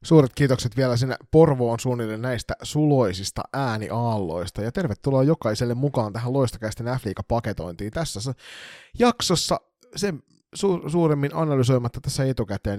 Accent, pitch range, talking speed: native, 105-140 Hz, 120 wpm